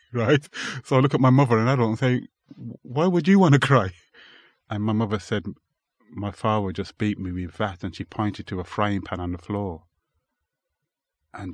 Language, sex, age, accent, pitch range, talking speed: English, male, 30-49, British, 90-115 Hz, 205 wpm